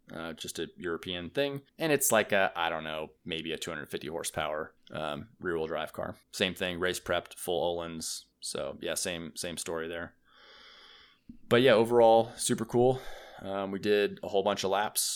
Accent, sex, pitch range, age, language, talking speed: American, male, 85-105 Hz, 20-39, English, 180 wpm